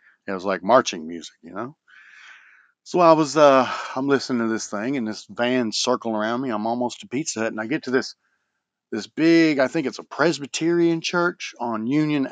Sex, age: male, 40-59